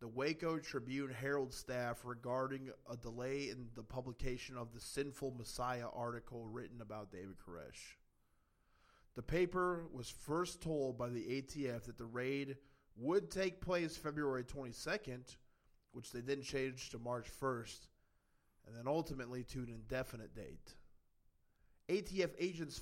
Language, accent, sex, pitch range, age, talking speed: English, American, male, 115-145 Hz, 20-39, 135 wpm